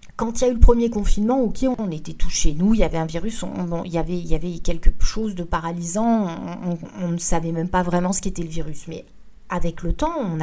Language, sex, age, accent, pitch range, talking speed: French, female, 40-59, French, 175-230 Hz, 265 wpm